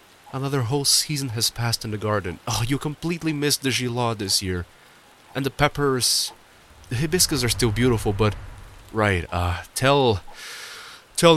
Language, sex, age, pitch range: English, male, 30-49, 90-125 Hz